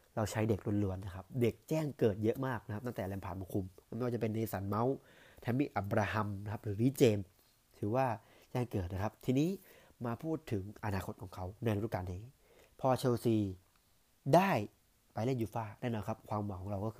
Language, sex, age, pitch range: Thai, male, 30-49, 105-125 Hz